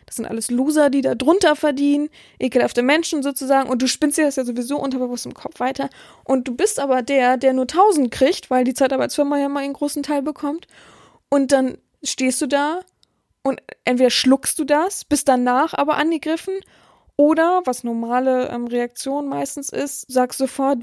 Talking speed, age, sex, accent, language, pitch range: 180 wpm, 20-39, female, German, German, 255-305 Hz